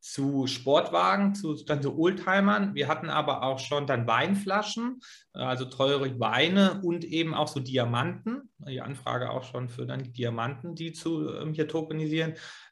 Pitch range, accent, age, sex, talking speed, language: 130-165 Hz, German, 30-49, male, 150 wpm, German